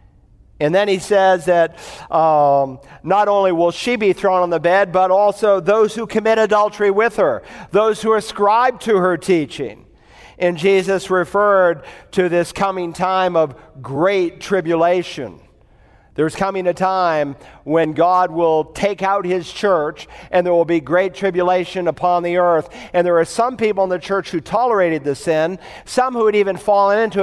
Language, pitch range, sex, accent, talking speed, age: English, 145-195 Hz, male, American, 170 wpm, 50-69